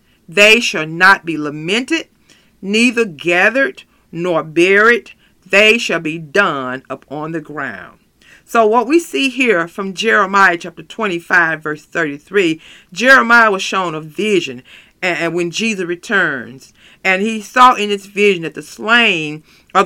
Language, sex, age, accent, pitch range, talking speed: English, female, 50-69, American, 170-215 Hz, 140 wpm